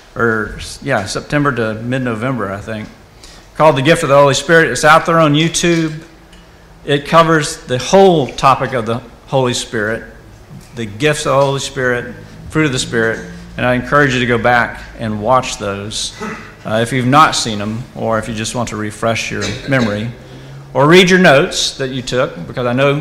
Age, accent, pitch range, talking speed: 50-69, American, 120-155 Hz, 190 wpm